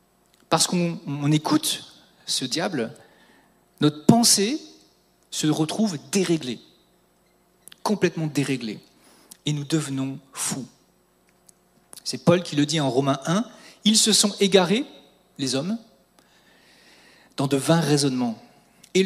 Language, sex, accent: French, male, French